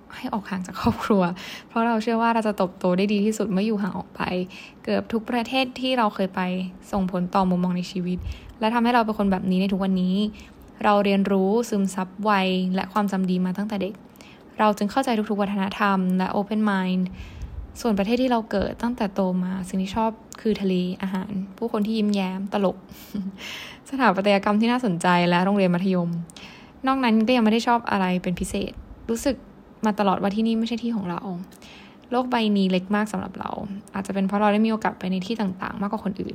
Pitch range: 190-220 Hz